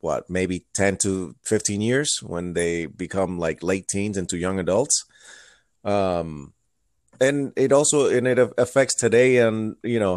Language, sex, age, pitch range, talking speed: English, male, 30-49, 100-125 Hz, 155 wpm